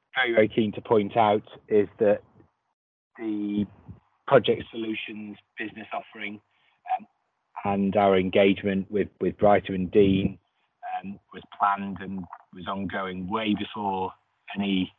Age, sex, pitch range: 30-49, male, 90-105 Hz